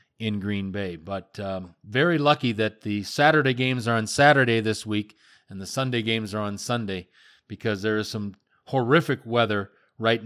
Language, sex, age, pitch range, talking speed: English, male, 40-59, 105-130 Hz, 175 wpm